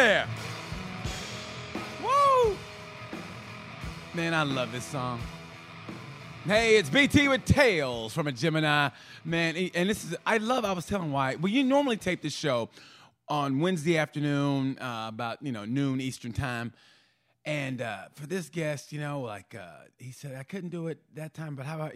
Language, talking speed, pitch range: English, 165 wpm, 125-165 Hz